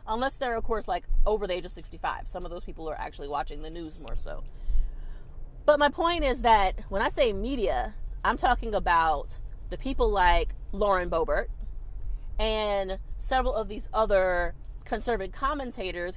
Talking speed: 165 wpm